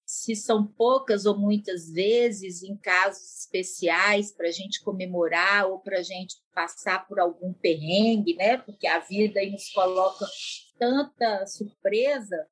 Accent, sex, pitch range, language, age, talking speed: Brazilian, female, 185-255 Hz, Portuguese, 40-59, 140 wpm